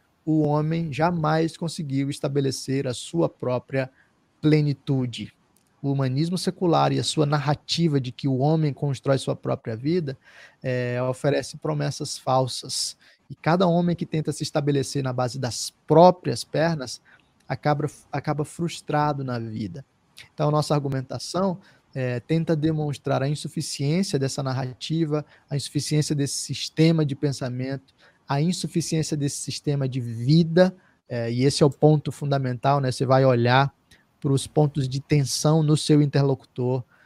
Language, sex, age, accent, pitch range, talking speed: Portuguese, male, 20-39, Brazilian, 130-150 Hz, 140 wpm